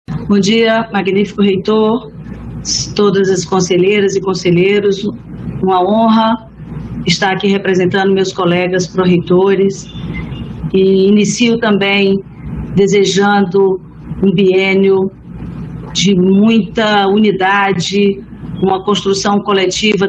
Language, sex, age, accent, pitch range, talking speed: Portuguese, female, 40-59, Brazilian, 185-205 Hz, 85 wpm